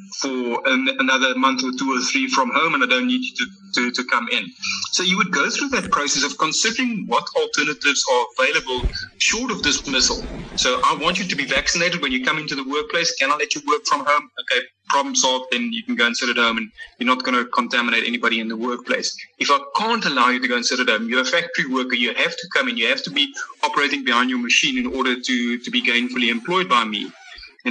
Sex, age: male, 30-49